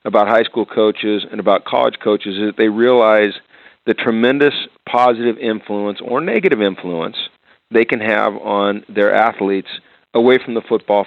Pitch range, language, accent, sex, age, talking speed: 105-125 Hz, English, American, male, 40-59, 155 wpm